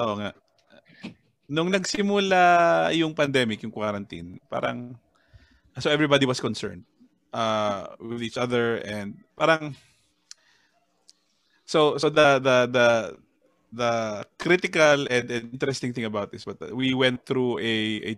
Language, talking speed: Filipino, 120 wpm